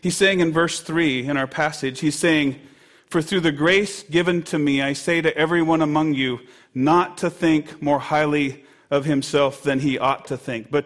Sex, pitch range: male, 150-205 Hz